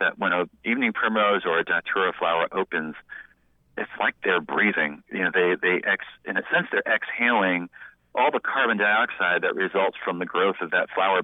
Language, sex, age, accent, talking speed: English, male, 40-59, American, 190 wpm